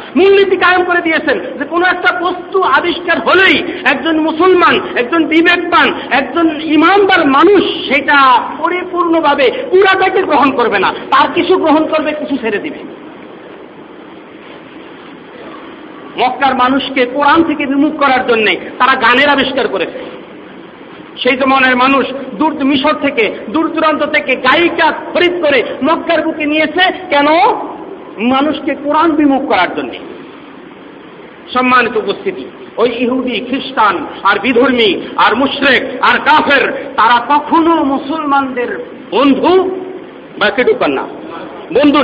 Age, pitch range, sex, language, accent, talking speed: 50-69, 270-340 Hz, male, Bengali, native, 80 wpm